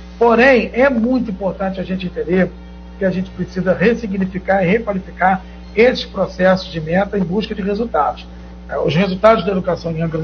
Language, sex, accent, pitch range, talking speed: Portuguese, male, Brazilian, 180-225 Hz, 165 wpm